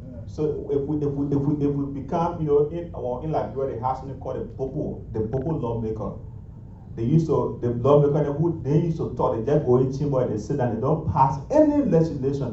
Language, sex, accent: English, male, Nigerian